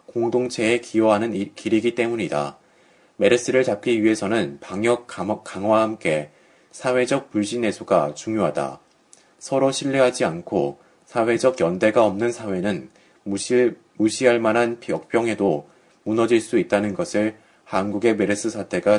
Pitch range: 110-135 Hz